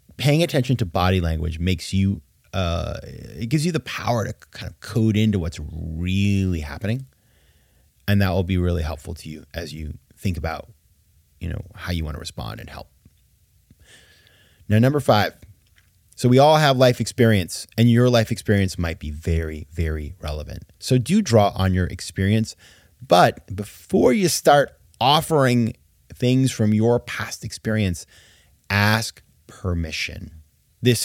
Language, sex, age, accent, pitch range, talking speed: English, male, 30-49, American, 85-125 Hz, 155 wpm